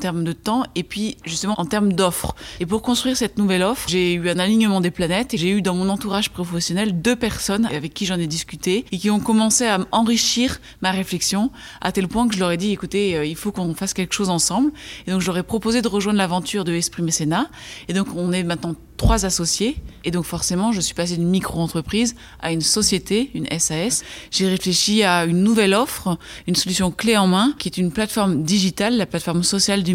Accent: French